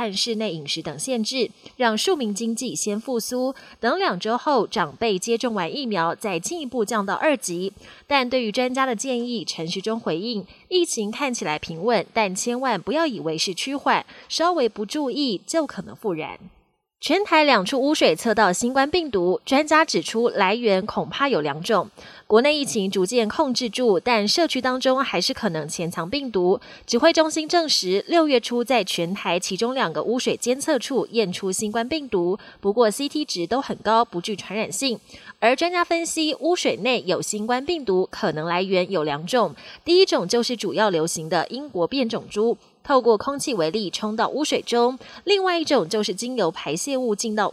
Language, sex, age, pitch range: Chinese, female, 20-39, 200-275 Hz